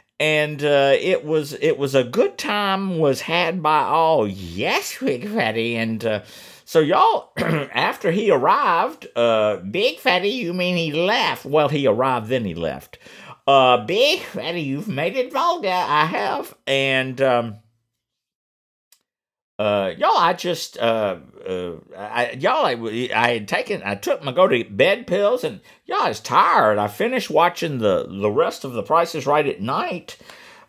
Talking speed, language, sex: 160 wpm, English, male